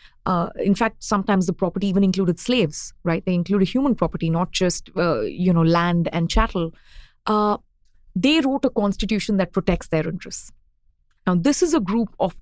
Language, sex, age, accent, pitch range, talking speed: English, female, 30-49, Indian, 175-220 Hz, 180 wpm